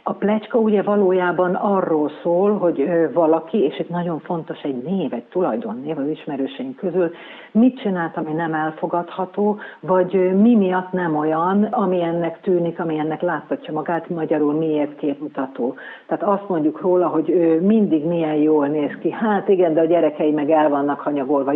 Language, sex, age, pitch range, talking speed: Hungarian, female, 50-69, 160-190 Hz, 160 wpm